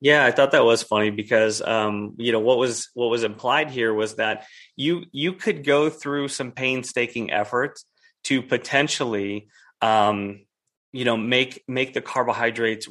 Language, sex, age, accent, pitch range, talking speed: English, male, 30-49, American, 105-125 Hz, 165 wpm